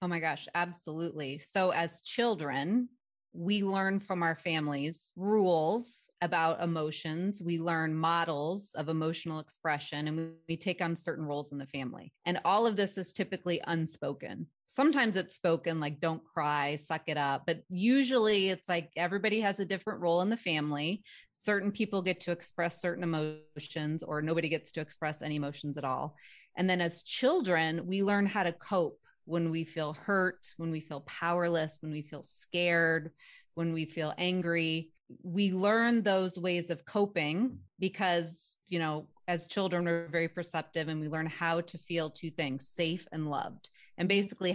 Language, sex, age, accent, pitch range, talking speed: English, female, 30-49, American, 160-195 Hz, 170 wpm